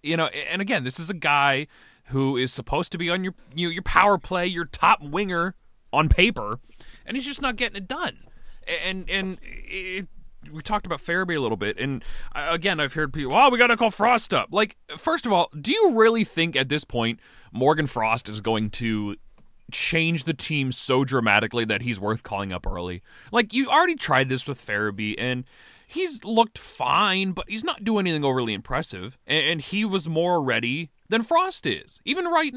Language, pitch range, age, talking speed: English, 130-215 Hz, 30-49, 200 wpm